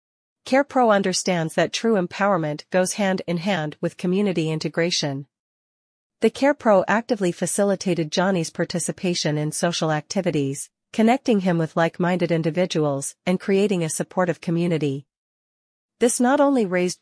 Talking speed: 115 wpm